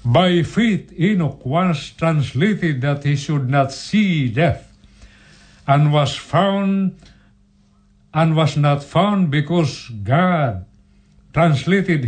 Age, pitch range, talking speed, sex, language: 60-79, 140-180 Hz, 105 wpm, male, Filipino